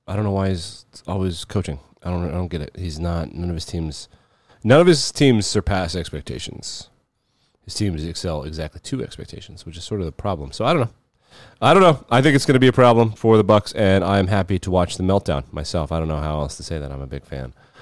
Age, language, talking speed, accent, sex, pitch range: 30-49, English, 255 wpm, American, male, 90-120 Hz